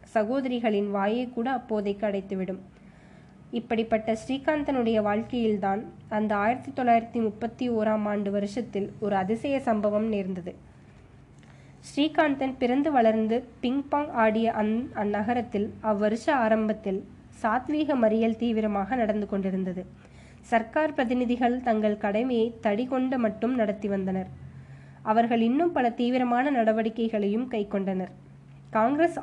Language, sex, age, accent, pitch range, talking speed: Tamil, female, 20-39, native, 210-245 Hz, 100 wpm